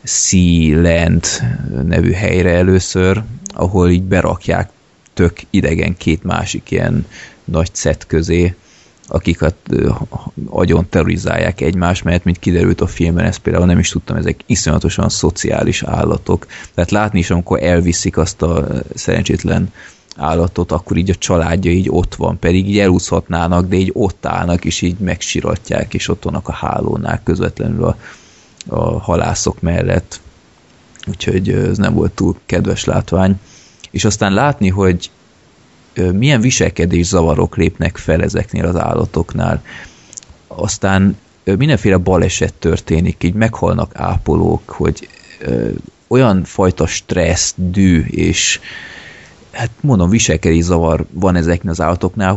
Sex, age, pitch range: male, 20-39, 85-95 Hz